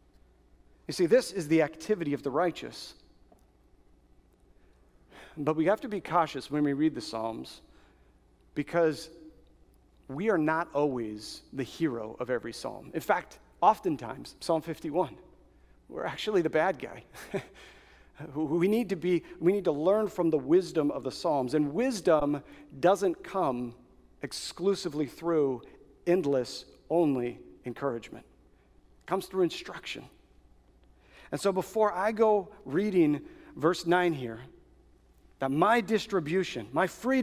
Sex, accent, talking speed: male, American, 125 wpm